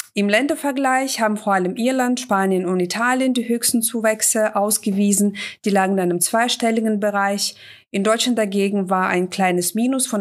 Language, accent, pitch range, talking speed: German, German, 190-230 Hz, 160 wpm